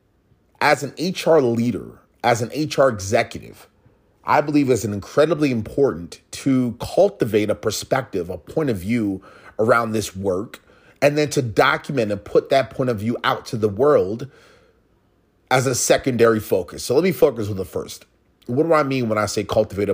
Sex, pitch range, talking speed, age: male, 105-140 Hz, 170 wpm, 30-49